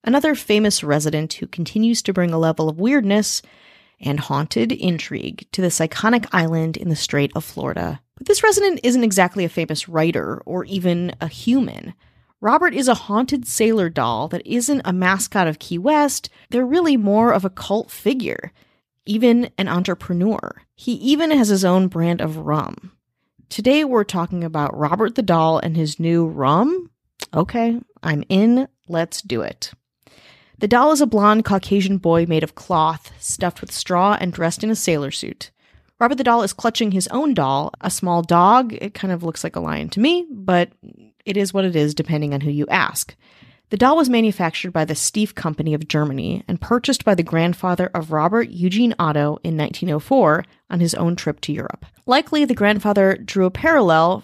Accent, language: American, English